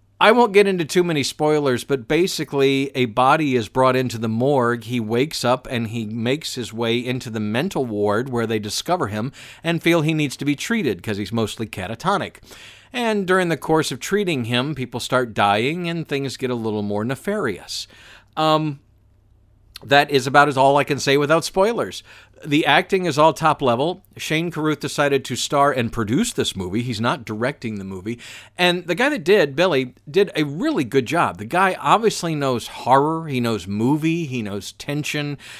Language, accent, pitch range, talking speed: English, American, 110-150 Hz, 190 wpm